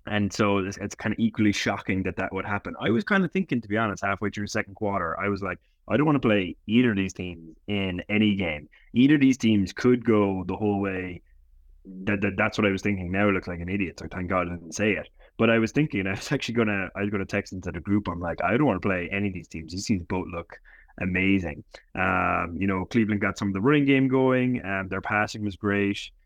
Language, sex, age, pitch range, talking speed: English, male, 20-39, 95-110 Hz, 260 wpm